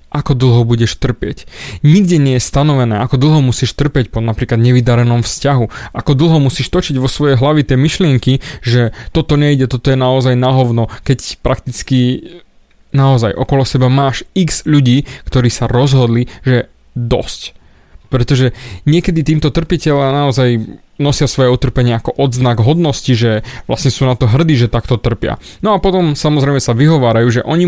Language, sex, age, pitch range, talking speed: Slovak, male, 20-39, 120-145 Hz, 160 wpm